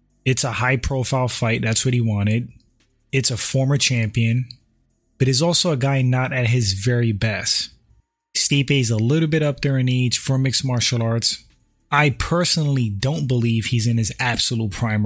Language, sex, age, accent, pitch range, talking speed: English, male, 20-39, American, 110-140 Hz, 180 wpm